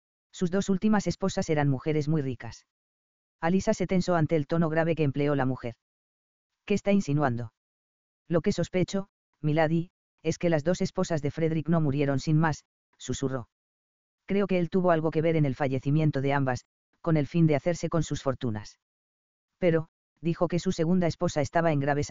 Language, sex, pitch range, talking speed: English, female, 130-170 Hz, 180 wpm